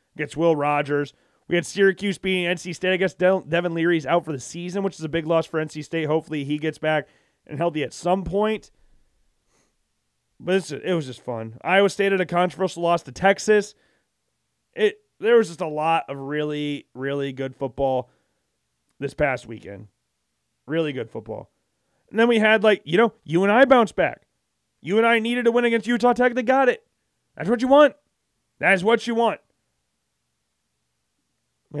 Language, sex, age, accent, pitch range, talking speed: English, male, 30-49, American, 145-195 Hz, 185 wpm